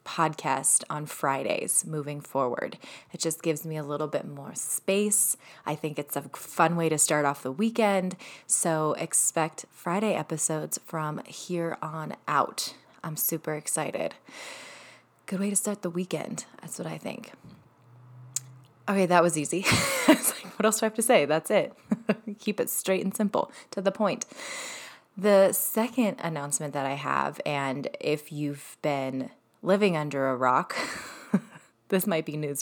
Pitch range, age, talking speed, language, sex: 145-185 Hz, 20-39, 155 wpm, English, female